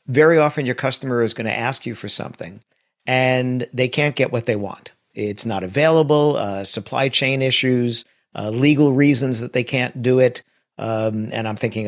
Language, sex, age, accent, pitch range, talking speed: English, male, 50-69, American, 105-130 Hz, 185 wpm